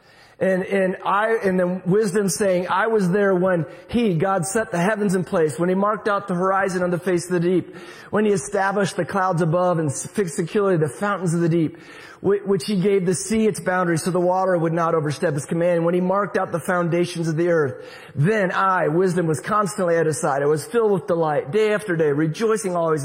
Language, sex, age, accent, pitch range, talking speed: English, male, 30-49, American, 165-200 Hz, 225 wpm